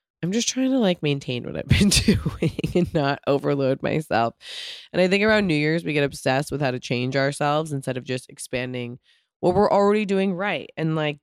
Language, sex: English, female